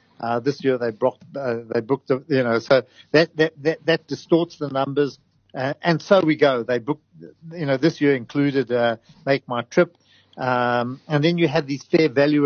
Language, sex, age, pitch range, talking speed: English, male, 50-69, 120-145 Hz, 200 wpm